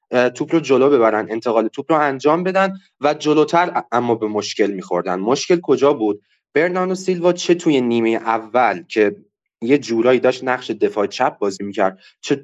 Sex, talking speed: male, 165 wpm